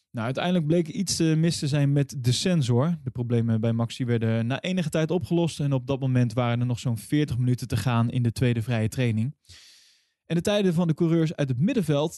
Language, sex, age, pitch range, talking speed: Dutch, male, 20-39, 125-170 Hz, 220 wpm